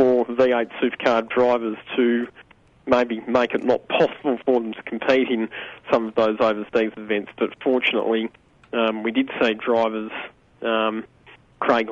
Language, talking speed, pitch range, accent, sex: English, 145 wpm, 115-130 Hz, Australian, male